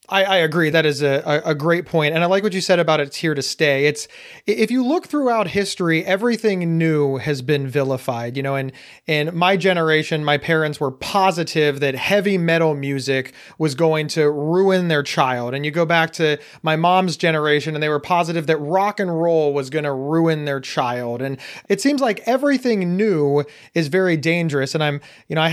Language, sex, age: English, male, 30-49